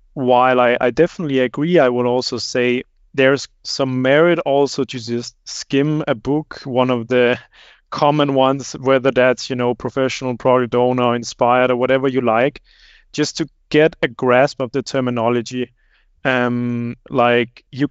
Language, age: English, 30-49